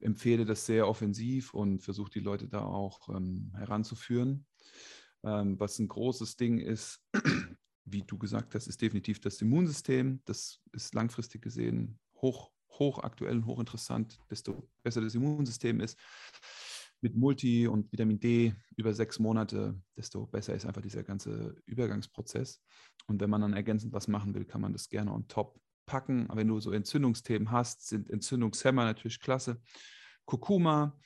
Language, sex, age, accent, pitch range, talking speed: German, male, 30-49, German, 105-125 Hz, 155 wpm